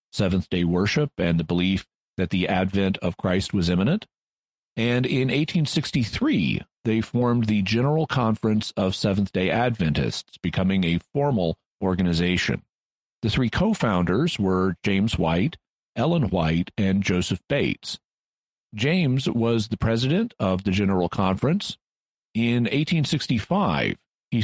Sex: male